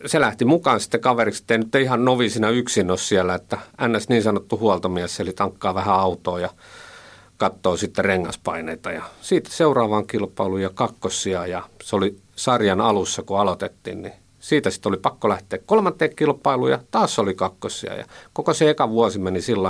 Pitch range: 95-120 Hz